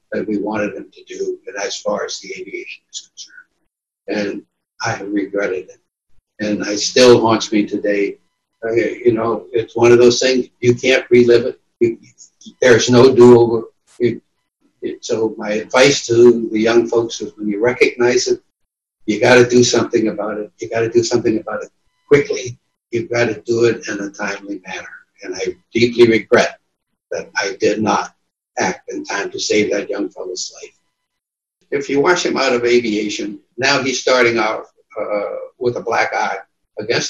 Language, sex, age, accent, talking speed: English, male, 60-79, American, 180 wpm